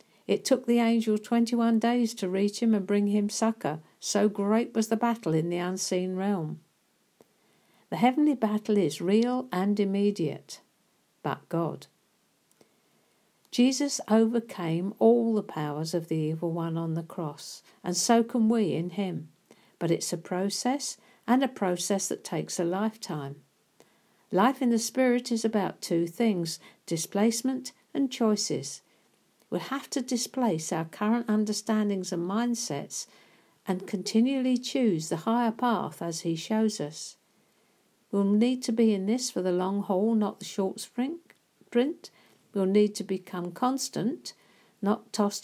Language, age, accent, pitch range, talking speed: English, 60-79, British, 180-235 Hz, 145 wpm